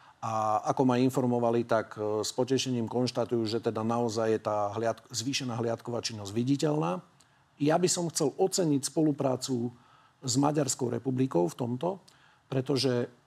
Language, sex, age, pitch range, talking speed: Slovak, male, 40-59, 115-140 Hz, 130 wpm